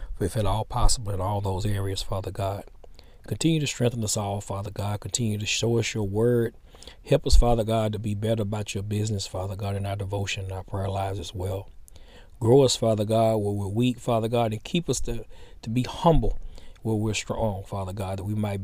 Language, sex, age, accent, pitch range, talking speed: English, male, 40-59, American, 100-110 Hz, 220 wpm